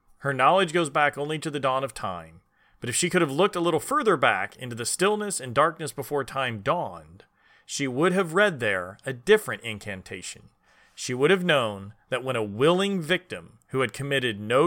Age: 30-49